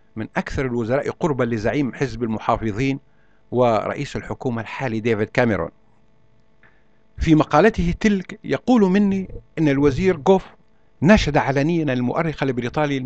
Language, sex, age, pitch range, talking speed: Arabic, male, 60-79, 120-160 Hz, 110 wpm